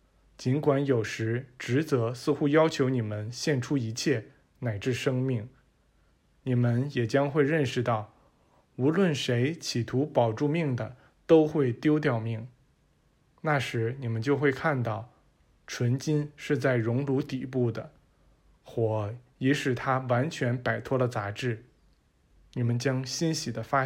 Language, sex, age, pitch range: Chinese, male, 20-39, 120-145 Hz